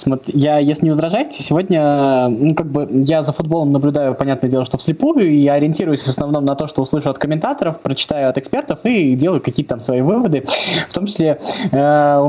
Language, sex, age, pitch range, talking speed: Russian, male, 20-39, 140-180 Hz, 185 wpm